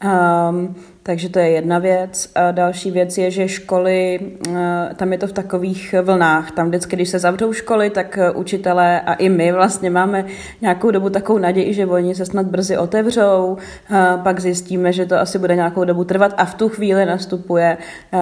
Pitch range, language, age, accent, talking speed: 165-180 Hz, Czech, 30-49, native, 175 wpm